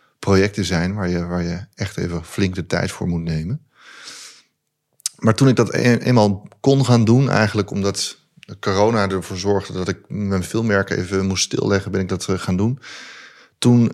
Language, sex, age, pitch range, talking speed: Dutch, male, 30-49, 95-110 Hz, 175 wpm